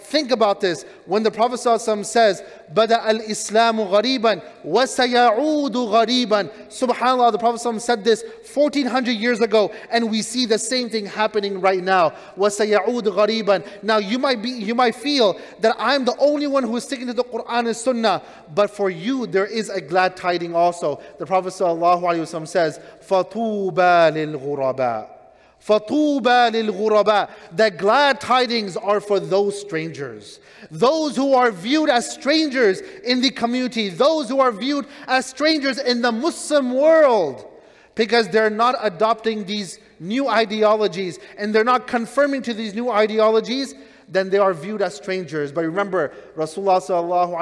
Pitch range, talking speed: 195-250 Hz, 155 wpm